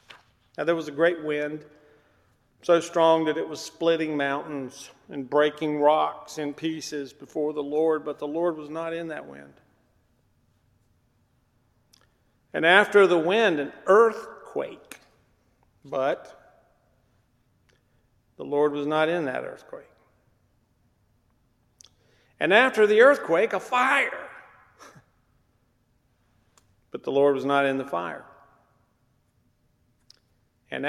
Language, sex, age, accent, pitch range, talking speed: English, male, 50-69, American, 120-160 Hz, 115 wpm